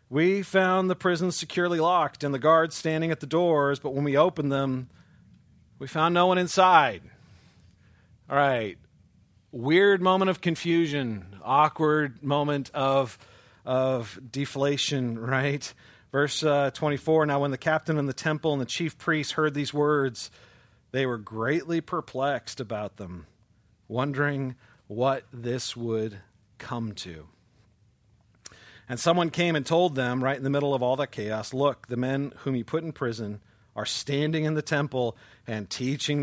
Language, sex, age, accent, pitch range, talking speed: English, male, 40-59, American, 115-155 Hz, 155 wpm